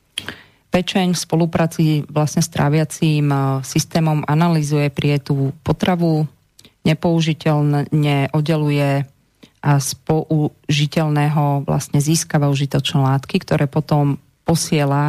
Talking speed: 90 wpm